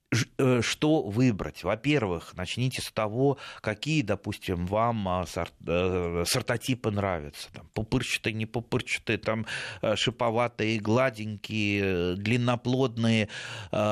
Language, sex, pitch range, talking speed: Russian, male, 95-130 Hz, 80 wpm